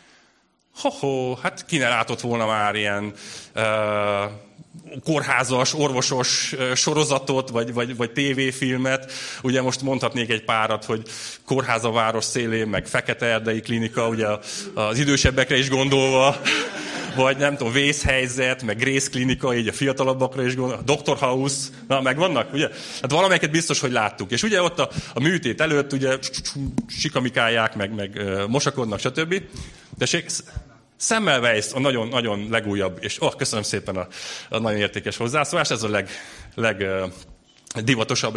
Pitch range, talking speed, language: 110-140 Hz, 135 wpm, Hungarian